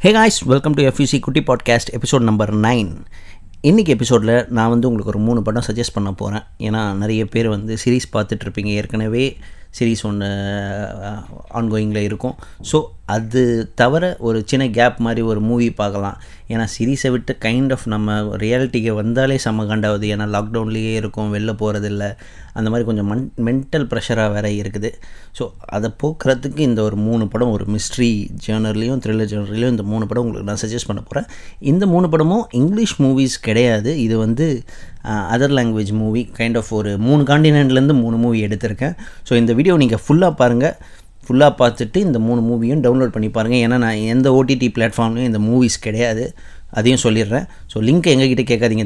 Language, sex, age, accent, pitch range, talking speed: Tamil, male, 30-49, native, 105-125 Hz, 160 wpm